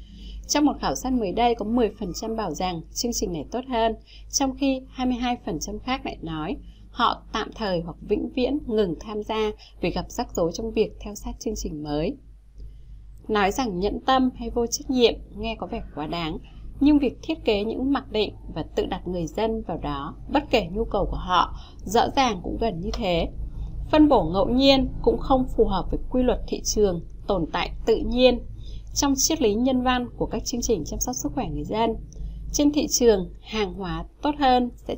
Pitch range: 205-255 Hz